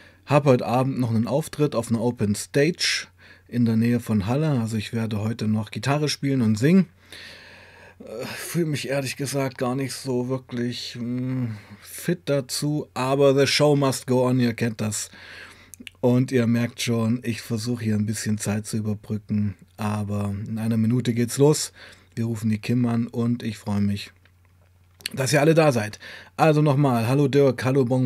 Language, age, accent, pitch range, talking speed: German, 30-49, German, 105-130 Hz, 175 wpm